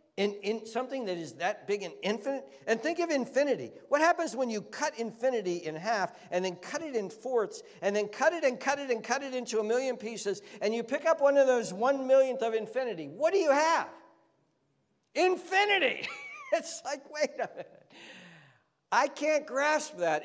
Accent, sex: American, male